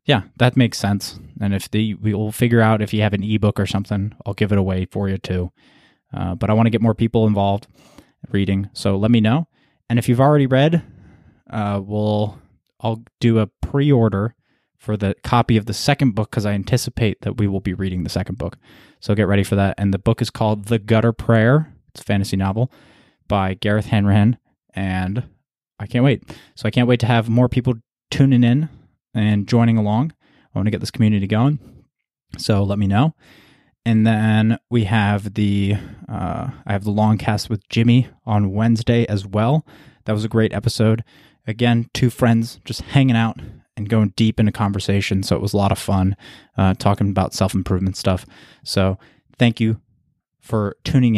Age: 20-39